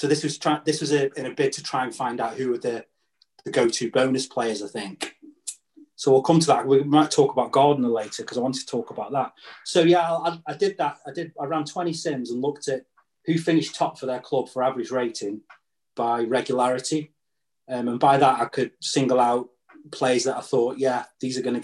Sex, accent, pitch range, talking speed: male, British, 125-155 Hz, 235 wpm